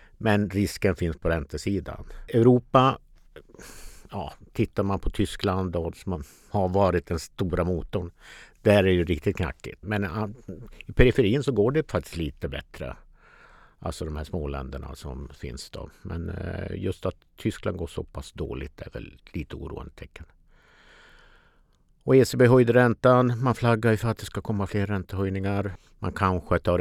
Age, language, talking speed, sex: 50-69, Swedish, 155 wpm, male